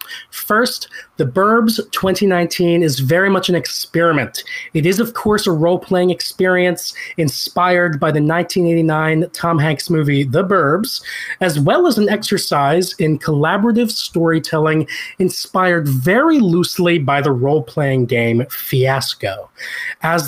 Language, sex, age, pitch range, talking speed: English, male, 30-49, 135-185 Hz, 125 wpm